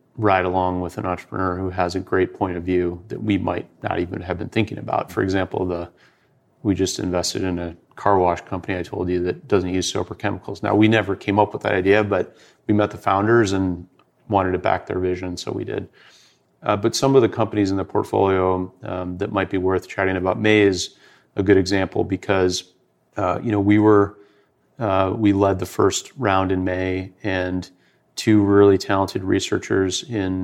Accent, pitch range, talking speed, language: American, 95-105 Hz, 205 wpm, English